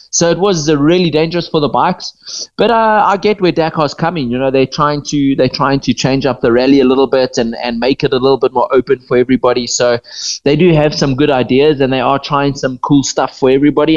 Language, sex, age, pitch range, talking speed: English, male, 20-39, 130-155 Hz, 245 wpm